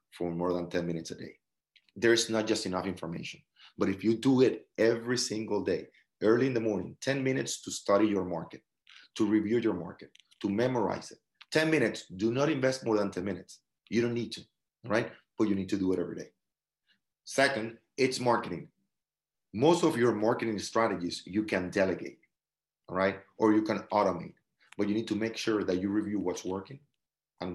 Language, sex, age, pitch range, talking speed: English, male, 30-49, 95-115 Hz, 190 wpm